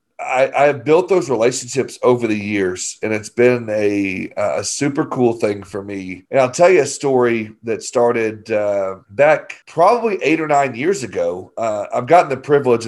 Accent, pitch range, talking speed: American, 110-145 Hz, 180 wpm